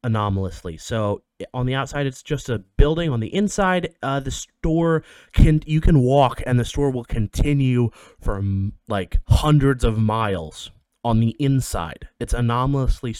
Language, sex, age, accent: English, male, 20-39, American